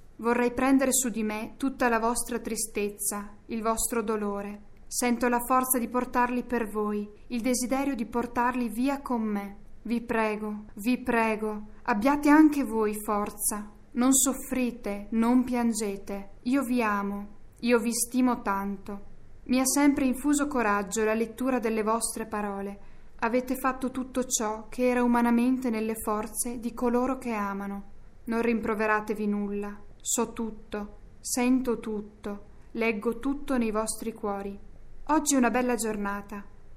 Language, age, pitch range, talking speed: Italian, 10-29, 215-250 Hz, 140 wpm